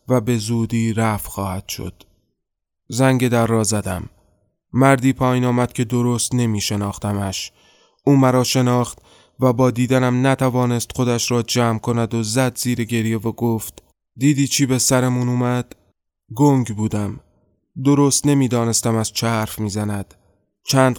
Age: 20-39